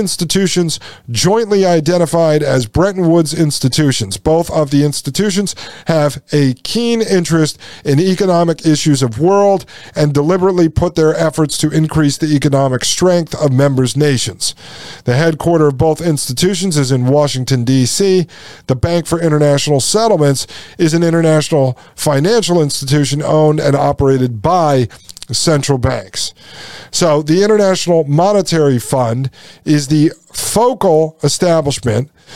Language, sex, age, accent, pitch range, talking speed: English, male, 40-59, American, 135-170 Hz, 125 wpm